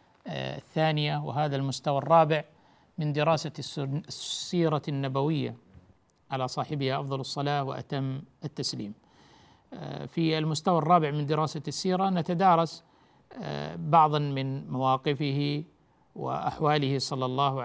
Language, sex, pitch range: Arabic, male, 135-165 Hz